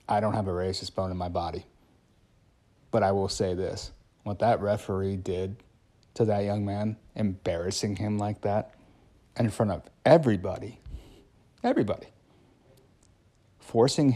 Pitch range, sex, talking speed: 95-120 Hz, male, 135 wpm